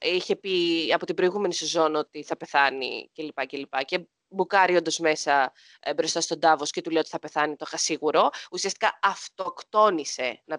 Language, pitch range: Greek, 165-250 Hz